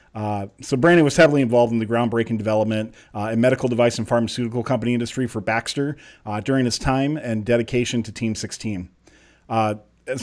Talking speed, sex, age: 180 wpm, male, 40-59